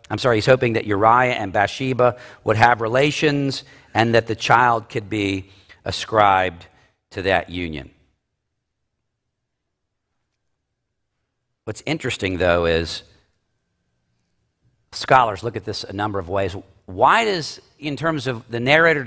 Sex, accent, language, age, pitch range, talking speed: male, American, English, 50-69, 105-145 Hz, 125 wpm